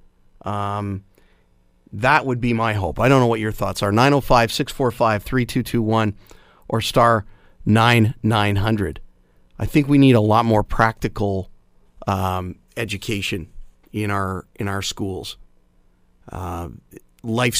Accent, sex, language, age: American, male, English, 40-59